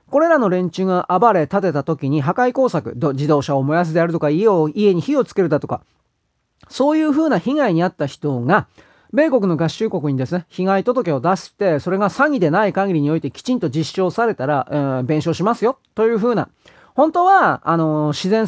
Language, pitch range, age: Japanese, 160-245 Hz, 30-49